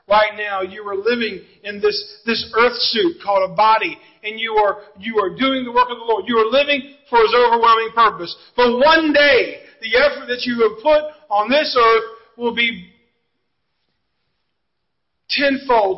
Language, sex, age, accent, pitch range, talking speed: English, male, 40-59, American, 215-265 Hz, 175 wpm